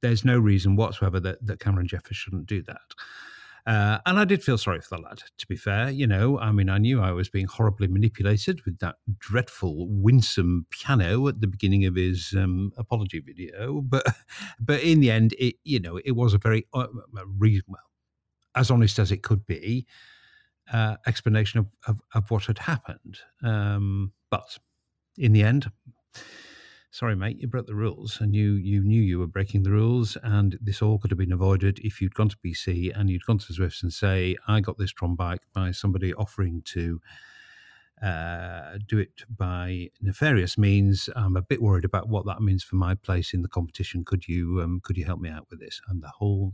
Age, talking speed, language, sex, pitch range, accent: 50-69, 205 wpm, English, male, 95-115 Hz, British